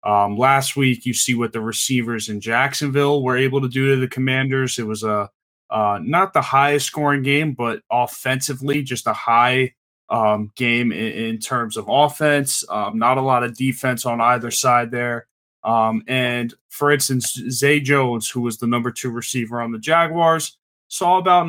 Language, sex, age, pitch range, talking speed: English, male, 20-39, 120-145 Hz, 180 wpm